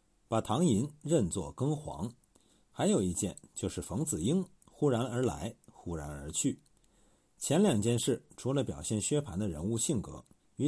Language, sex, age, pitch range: Chinese, male, 50-69, 95-150 Hz